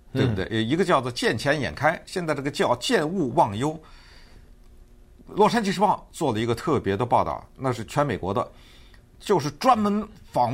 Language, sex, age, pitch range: Chinese, male, 50-69, 105-145 Hz